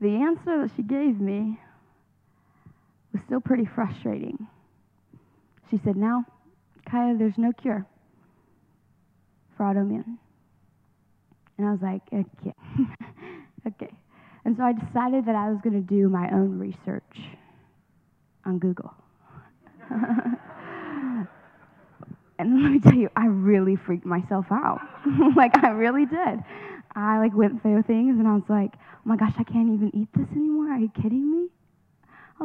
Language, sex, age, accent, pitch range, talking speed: English, female, 20-39, American, 205-255 Hz, 140 wpm